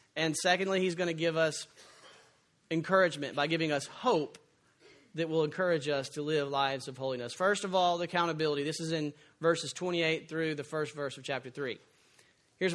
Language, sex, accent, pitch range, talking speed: English, male, American, 145-195 Hz, 185 wpm